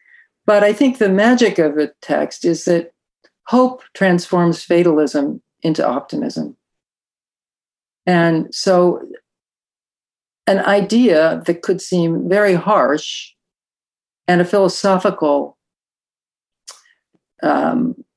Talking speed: 95 wpm